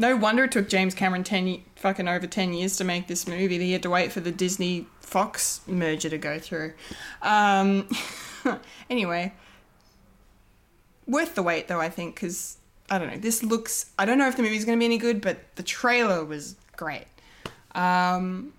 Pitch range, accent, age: 170-200 Hz, Australian, 20-39